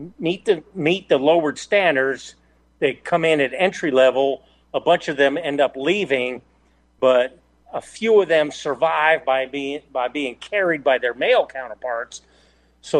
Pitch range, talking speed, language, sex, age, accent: 115-150 Hz, 160 wpm, English, male, 50-69, American